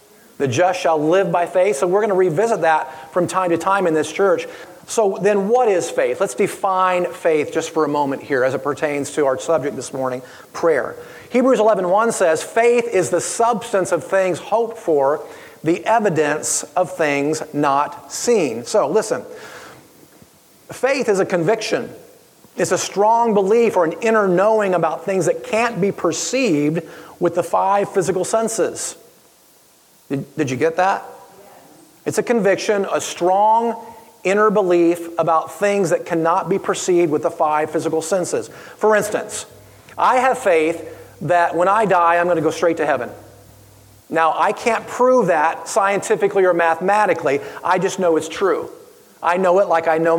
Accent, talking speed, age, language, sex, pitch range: American, 170 wpm, 40-59, English, male, 160-215 Hz